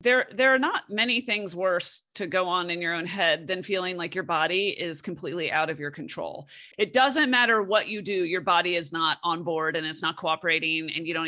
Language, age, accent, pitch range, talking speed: English, 30-49, American, 175-240 Hz, 235 wpm